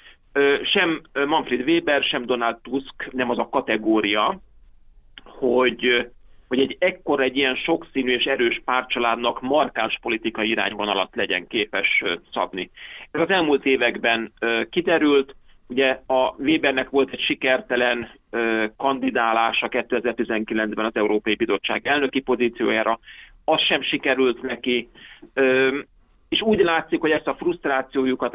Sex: male